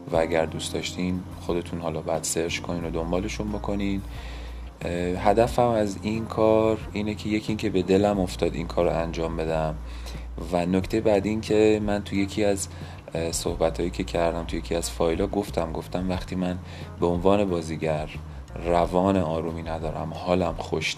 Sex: male